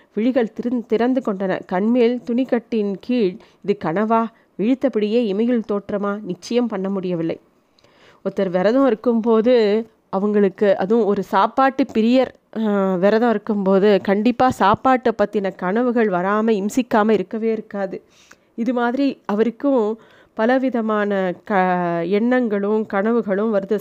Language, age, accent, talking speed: Tamil, 30-49, native, 105 wpm